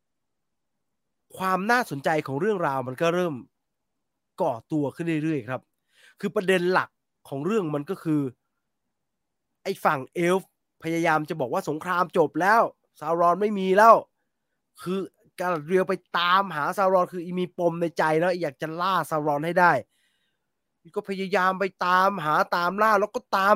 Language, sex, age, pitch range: English, male, 20-39, 160-210 Hz